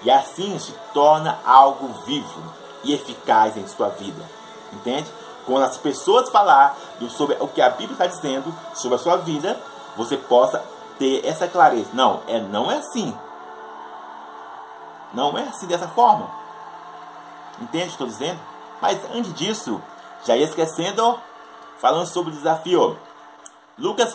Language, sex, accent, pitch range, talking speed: Portuguese, male, Brazilian, 135-215 Hz, 145 wpm